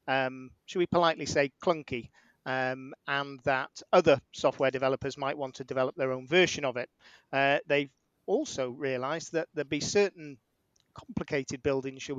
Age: 40-59